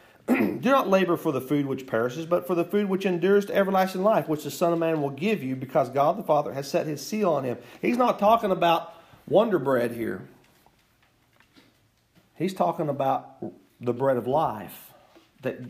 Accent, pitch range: American, 140-200 Hz